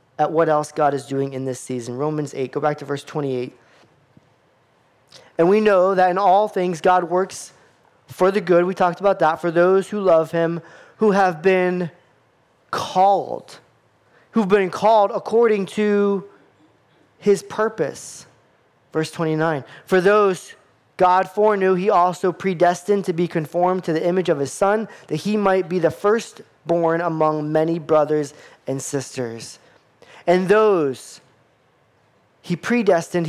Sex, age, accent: male, 20-39, American